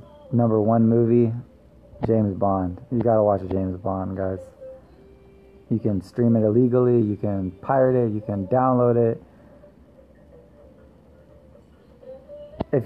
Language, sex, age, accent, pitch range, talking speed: English, male, 20-39, American, 105-130 Hz, 115 wpm